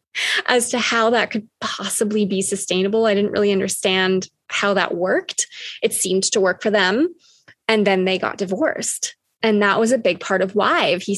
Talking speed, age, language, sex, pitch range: 190 wpm, 20-39, English, female, 190-220 Hz